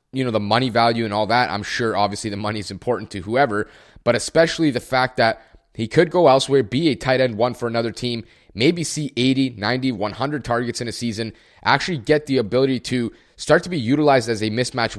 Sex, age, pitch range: male, 20-39, 110-140 Hz